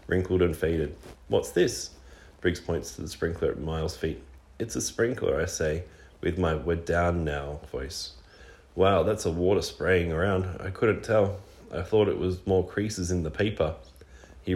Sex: male